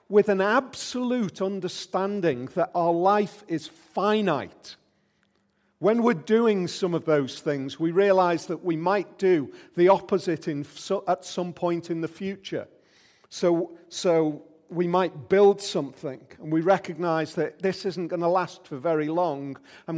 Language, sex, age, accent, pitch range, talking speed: English, male, 40-59, British, 140-185 Hz, 155 wpm